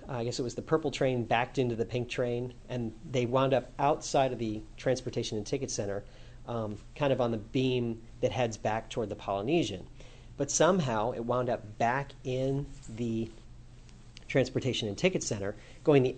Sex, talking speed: male, 180 wpm